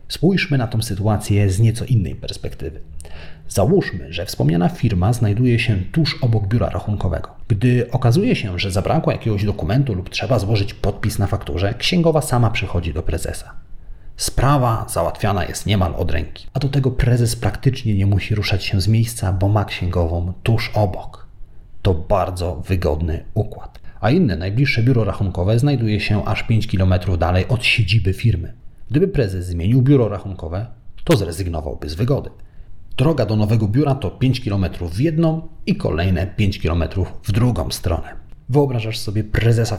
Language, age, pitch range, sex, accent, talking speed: Polish, 40-59, 95-120 Hz, male, native, 155 wpm